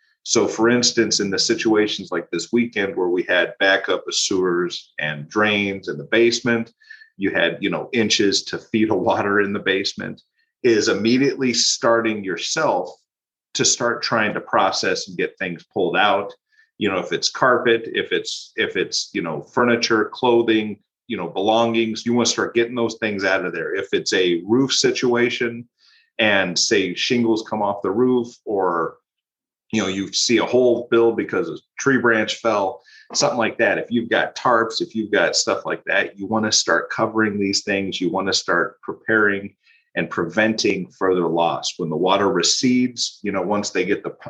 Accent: American